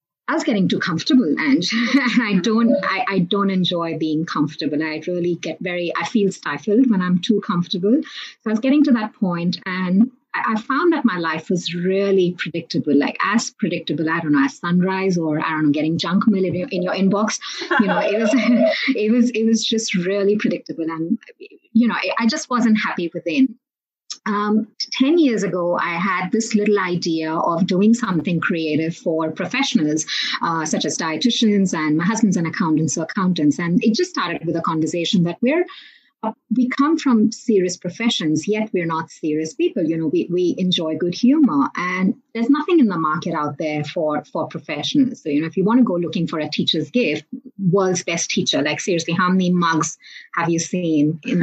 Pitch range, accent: 170-230 Hz, Indian